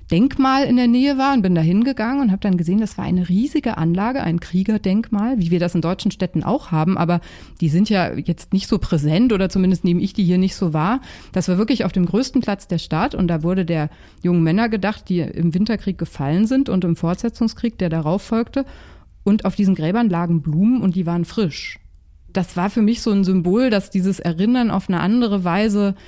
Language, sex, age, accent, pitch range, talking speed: German, female, 30-49, German, 175-210 Hz, 220 wpm